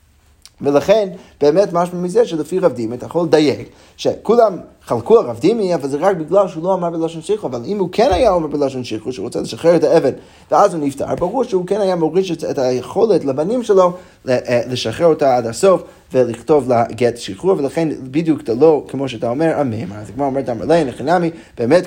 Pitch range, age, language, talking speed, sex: 125-180 Hz, 30-49, Hebrew, 195 wpm, male